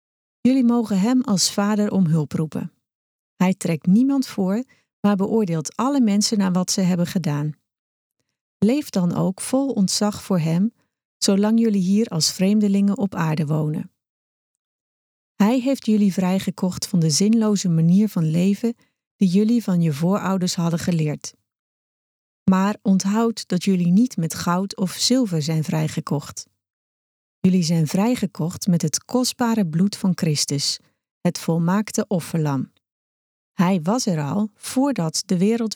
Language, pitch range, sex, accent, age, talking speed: Dutch, 165-210 Hz, female, Dutch, 40-59, 140 wpm